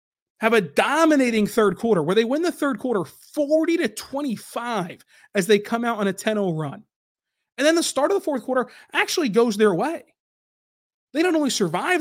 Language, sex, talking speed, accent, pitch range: English, male, 190 wpm, American, 195-260 Hz